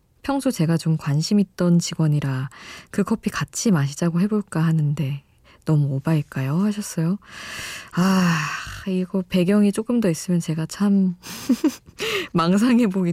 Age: 20-39